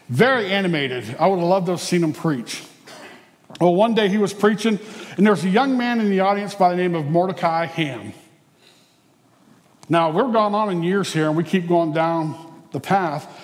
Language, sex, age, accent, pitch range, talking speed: English, male, 50-69, American, 155-195 Hz, 205 wpm